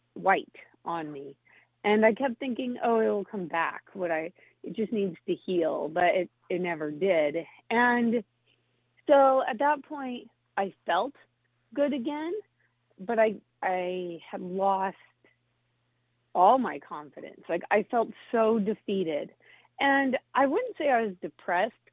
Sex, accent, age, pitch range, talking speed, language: female, American, 30-49, 175-235 Hz, 145 wpm, English